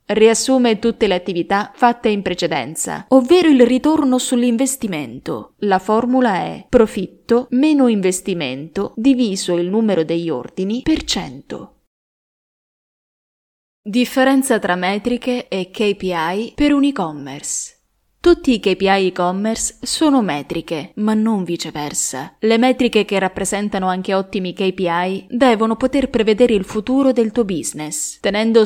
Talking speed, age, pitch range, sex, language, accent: 120 wpm, 20-39, 185-245 Hz, female, Italian, native